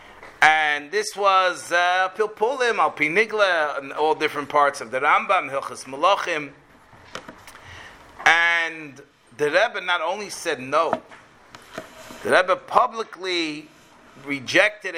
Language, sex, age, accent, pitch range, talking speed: English, male, 40-59, American, 145-185 Hz, 100 wpm